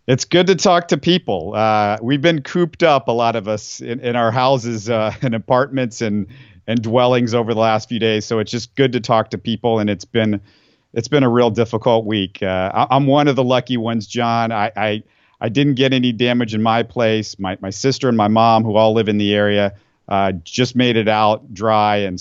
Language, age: English, 40-59